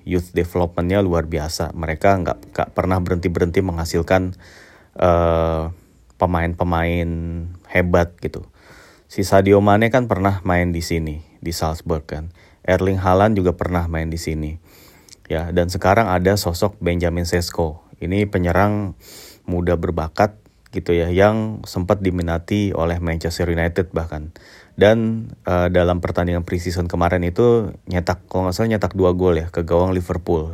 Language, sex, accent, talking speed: Indonesian, male, native, 140 wpm